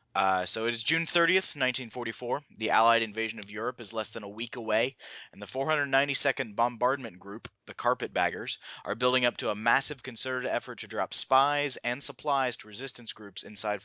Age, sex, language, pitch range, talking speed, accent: 20-39, male, English, 105-130 Hz, 180 wpm, American